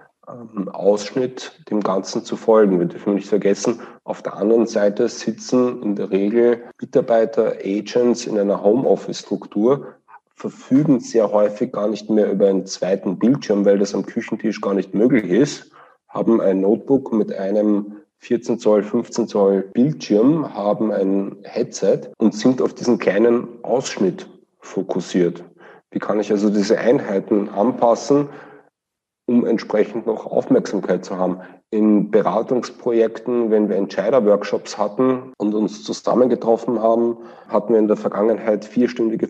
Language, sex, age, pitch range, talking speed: German, male, 40-59, 100-115 Hz, 135 wpm